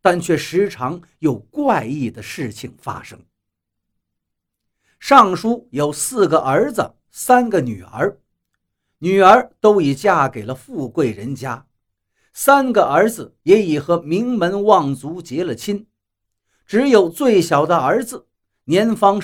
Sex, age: male, 50-69